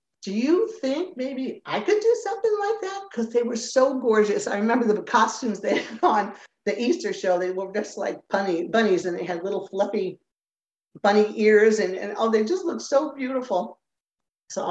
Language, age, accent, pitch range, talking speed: English, 50-69, American, 180-220 Hz, 190 wpm